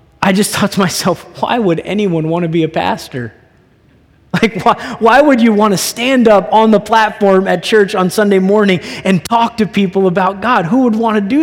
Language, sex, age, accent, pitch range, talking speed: English, male, 20-39, American, 170-225 Hz, 215 wpm